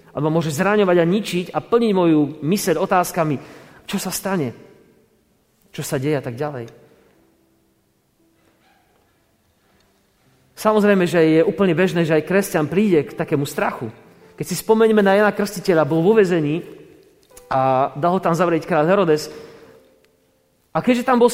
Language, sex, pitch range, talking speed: Slovak, male, 145-195 Hz, 145 wpm